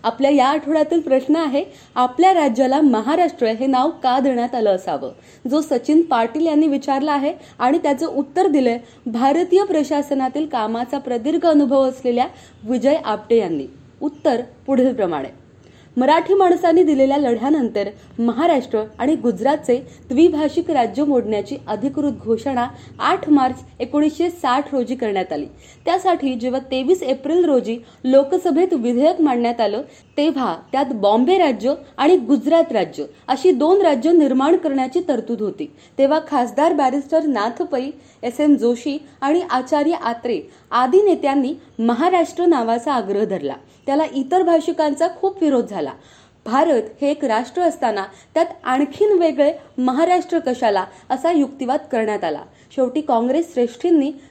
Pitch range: 245-315 Hz